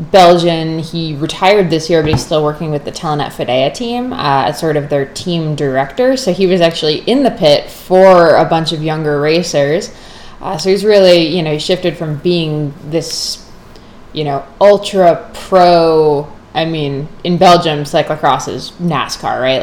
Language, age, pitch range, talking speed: English, 20-39, 150-180 Hz, 175 wpm